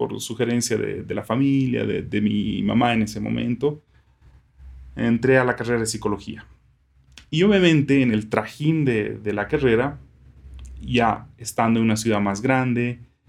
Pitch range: 105-130 Hz